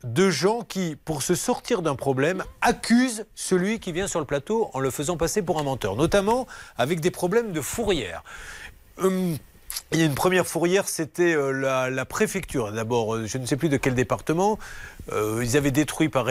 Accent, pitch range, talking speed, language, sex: French, 135-215 Hz, 190 wpm, French, male